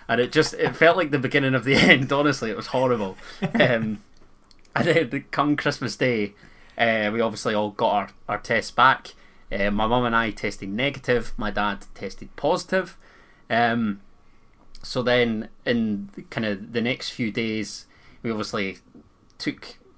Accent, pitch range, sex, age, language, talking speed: British, 105-130 Hz, male, 20-39, English, 160 wpm